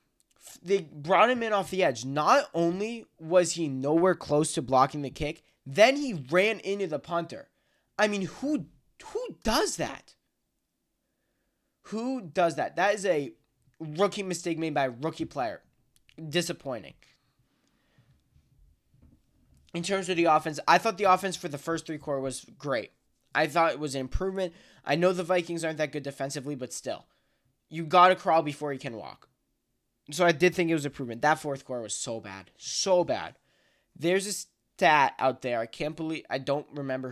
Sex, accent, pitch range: male, American, 140-180 Hz